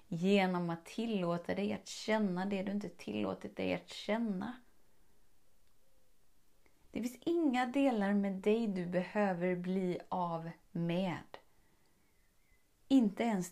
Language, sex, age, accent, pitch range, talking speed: Swedish, female, 30-49, native, 175-210 Hz, 115 wpm